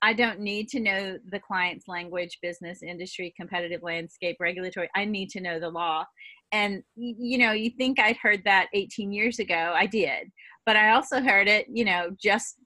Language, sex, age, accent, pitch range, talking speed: English, female, 30-49, American, 190-235 Hz, 190 wpm